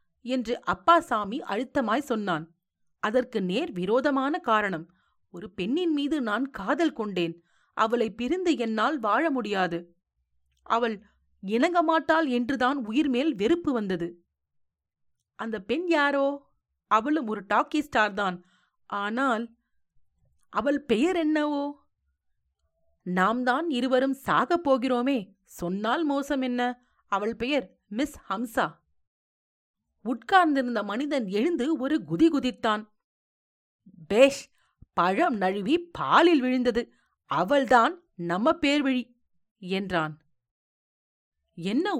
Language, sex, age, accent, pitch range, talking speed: Tamil, female, 30-49, native, 195-300 Hz, 90 wpm